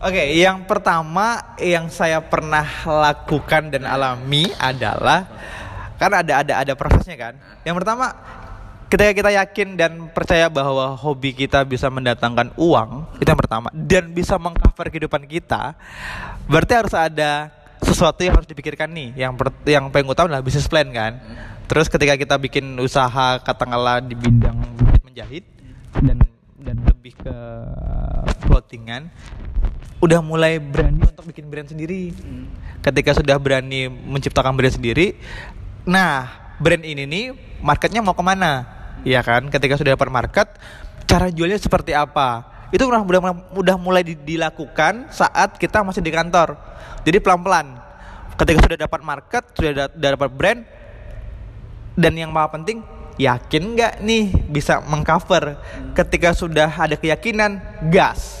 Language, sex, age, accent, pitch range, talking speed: Indonesian, male, 20-39, native, 130-170 Hz, 135 wpm